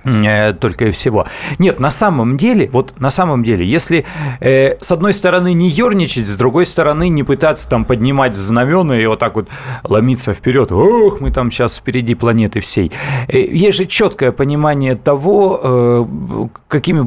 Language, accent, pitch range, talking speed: Russian, native, 105-140 Hz, 155 wpm